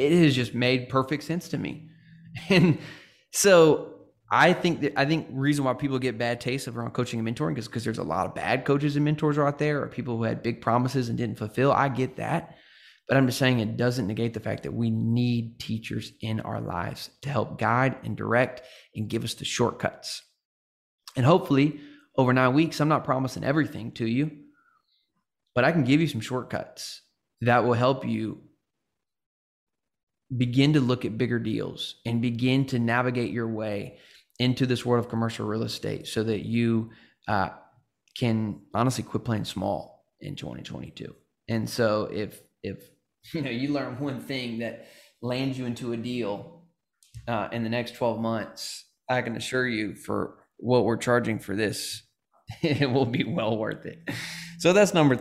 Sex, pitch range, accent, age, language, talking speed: male, 115-145 Hz, American, 20-39, English, 185 wpm